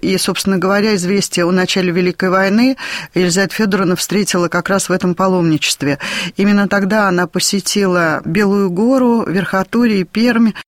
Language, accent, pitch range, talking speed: Russian, native, 180-215 Hz, 140 wpm